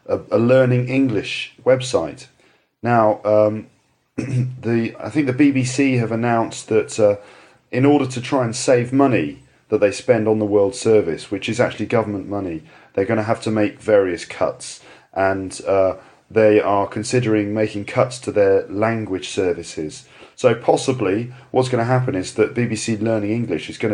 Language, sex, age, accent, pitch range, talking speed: English, male, 40-59, British, 105-125 Hz, 165 wpm